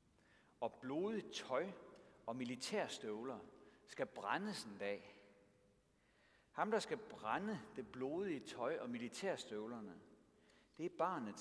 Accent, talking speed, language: native, 110 wpm, Danish